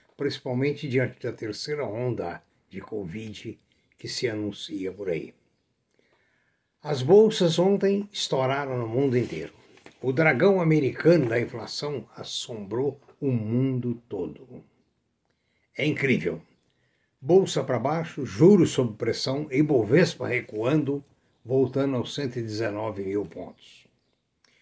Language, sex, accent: Portuguese, male, Brazilian